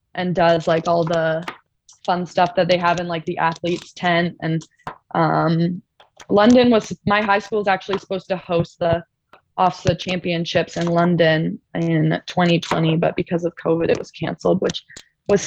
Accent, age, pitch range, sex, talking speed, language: American, 20-39, 165-190 Hz, female, 170 wpm, English